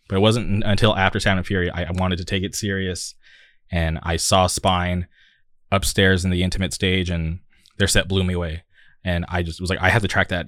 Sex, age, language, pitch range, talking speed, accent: male, 20-39, English, 90-100 Hz, 230 wpm, American